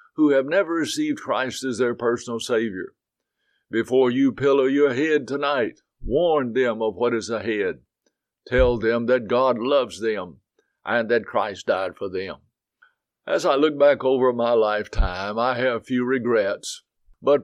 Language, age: English, 60-79